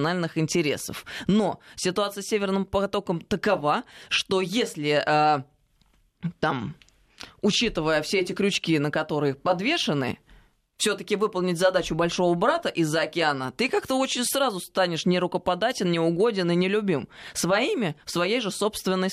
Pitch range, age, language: 170-220 Hz, 20-39, Russian